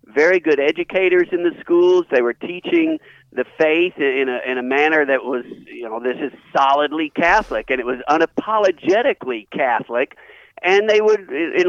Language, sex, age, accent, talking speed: English, male, 50-69, American, 170 wpm